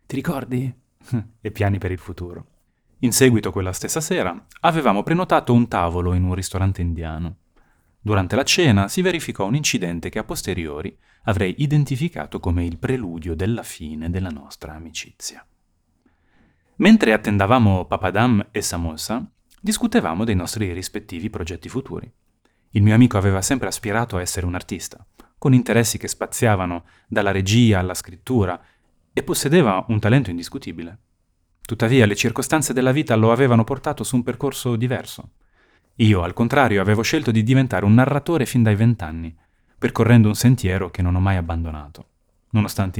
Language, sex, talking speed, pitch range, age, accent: Italian, male, 150 wpm, 90-125 Hz, 30-49, native